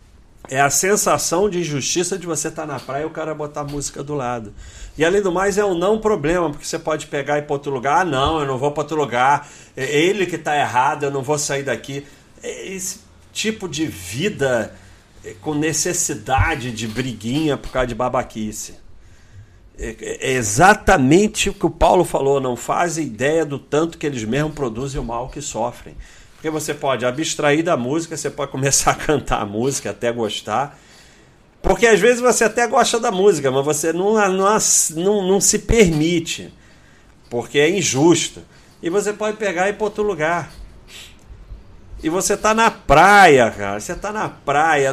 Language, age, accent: Portuguese, 40-59, Brazilian